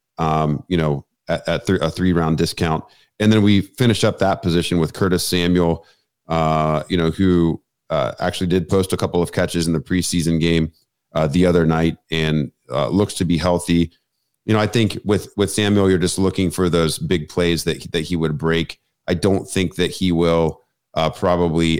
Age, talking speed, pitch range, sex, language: 40-59, 200 wpm, 80-90 Hz, male, English